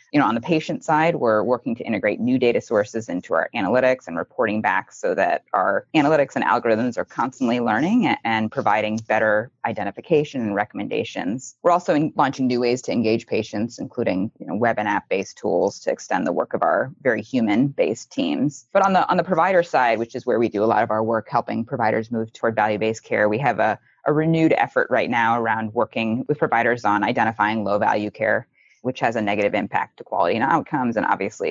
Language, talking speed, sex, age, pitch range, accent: English, 210 wpm, female, 20-39, 110-150 Hz, American